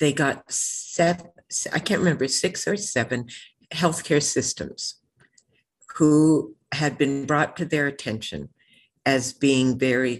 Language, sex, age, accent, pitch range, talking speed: English, female, 60-79, American, 120-145 Hz, 120 wpm